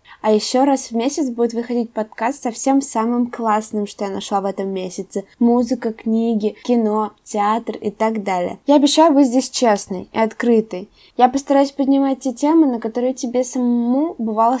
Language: Russian